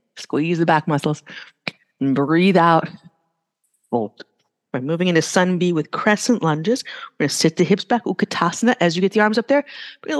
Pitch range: 160-245 Hz